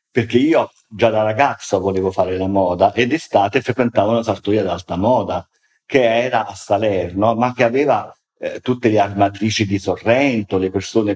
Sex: male